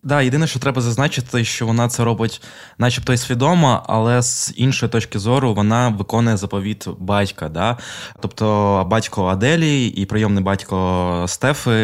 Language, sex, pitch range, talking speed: Ukrainian, male, 95-115 Hz, 145 wpm